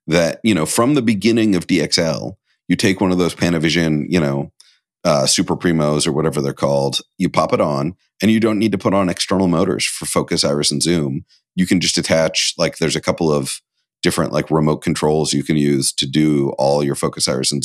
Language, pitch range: English, 75-100 Hz